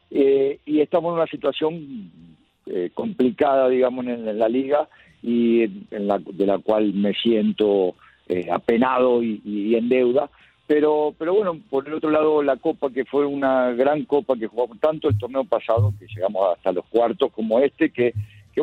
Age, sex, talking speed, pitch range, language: 50-69, male, 185 wpm, 110-145 Hz, Spanish